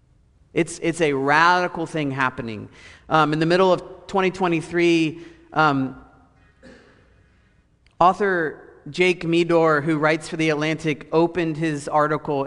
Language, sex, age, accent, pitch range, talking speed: English, male, 40-59, American, 120-160 Hz, 115 wpm